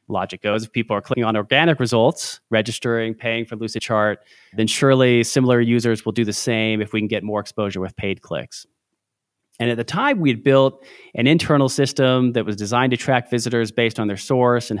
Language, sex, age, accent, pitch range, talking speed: English, male, 30-49, American, 110-130 Hz, 205 wpm